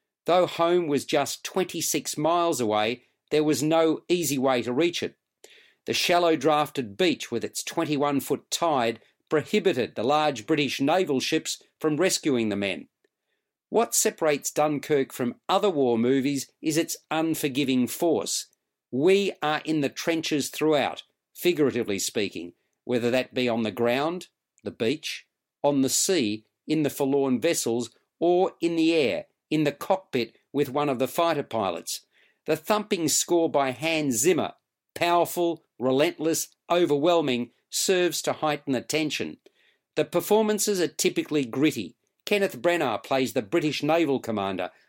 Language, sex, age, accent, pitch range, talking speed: English, male, 40-59, Australian, 135-170 Hz, 140 wpm